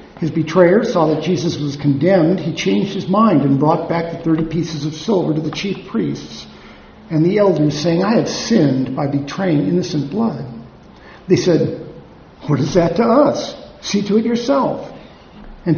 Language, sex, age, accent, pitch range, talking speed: English, male, 50-69, American, 155-195 Hz, 175 wpm